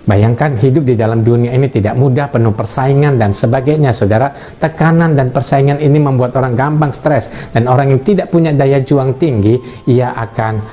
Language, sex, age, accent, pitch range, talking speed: Indonesian, male, 50-69, native, 115-160 Hz, 175 wpm